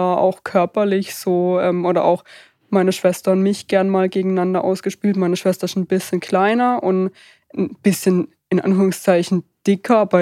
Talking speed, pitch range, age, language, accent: 160 wpm, 175-195 Hz, 20-39, German, German